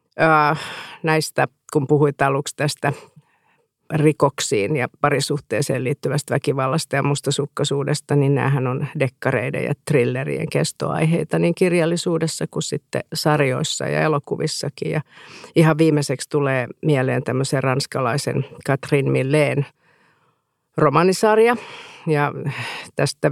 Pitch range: 135-155 Hz